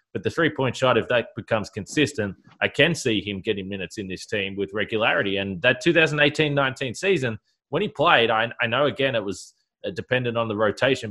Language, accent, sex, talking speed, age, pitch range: English, Australian, male, 195 wpm, 20-39, 105-135 Hz